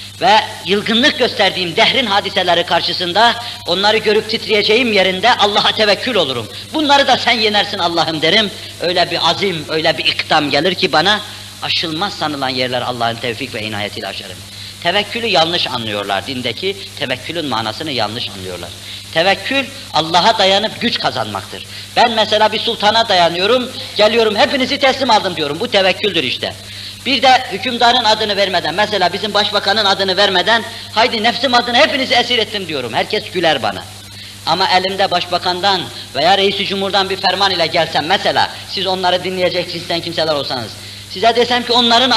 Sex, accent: female, native